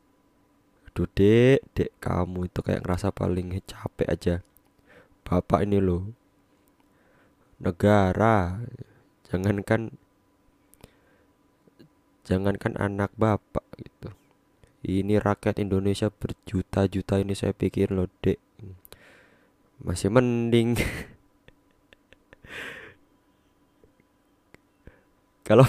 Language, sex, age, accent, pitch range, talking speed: Indonesian, male, 20-39, native, 90-105 Hz, 70 wpm